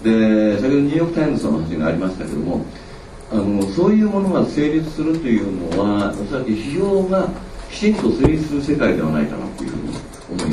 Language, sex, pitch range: Japanese, male, 95-145 Hz